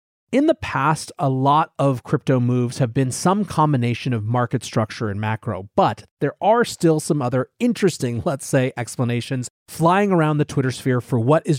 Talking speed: 180 wpm